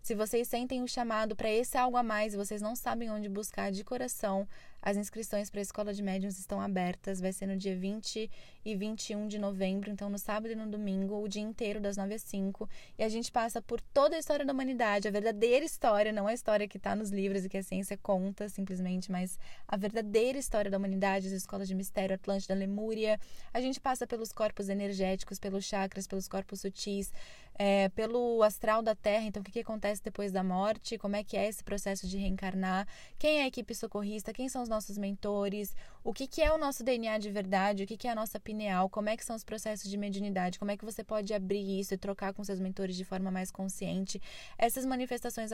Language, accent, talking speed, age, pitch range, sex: Portuguese, Brazilian, 225 wpm, 10-29, 195-225 Hz, female